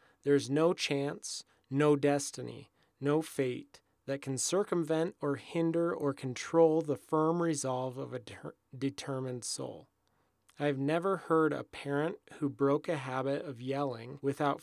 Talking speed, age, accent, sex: 140 wpm, 30-49, American, male